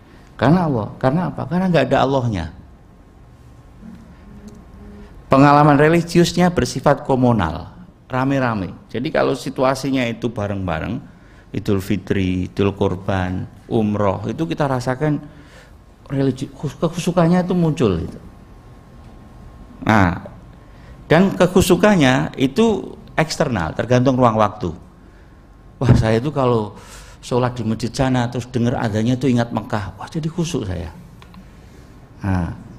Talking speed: 100 wpm